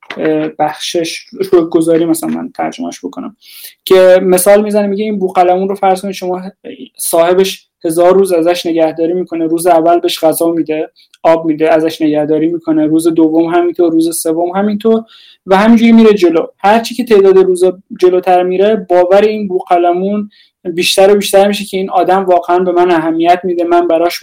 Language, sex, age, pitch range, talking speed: Persian, male, 20-39, 170-195 Hz, 160 wpm